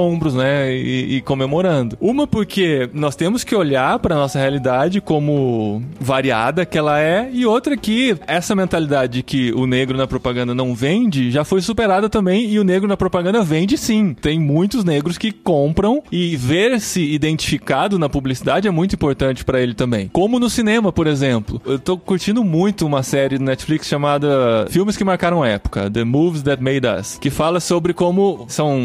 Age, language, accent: 20-39, Portuguese, Brazilian